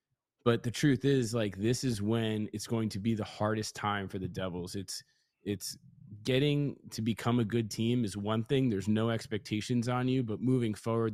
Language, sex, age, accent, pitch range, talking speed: English, male, 20-39, American, 105-120 Hz, 200 wpm